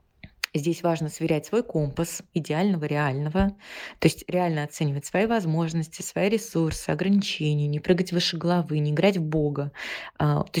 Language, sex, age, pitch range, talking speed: Russian, female, 20-39, 150-180 Hz, 140 wpm